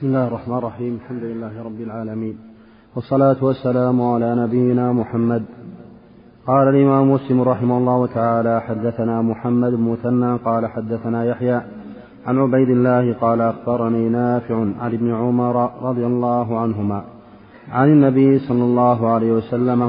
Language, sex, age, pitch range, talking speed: Arabic, male, 30-49, 115-125 Hz, 130 wpm